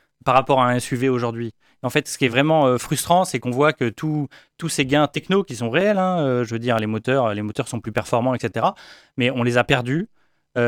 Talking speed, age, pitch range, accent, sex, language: 235 wpm, 30-49, 115-140 Hz, French, male, French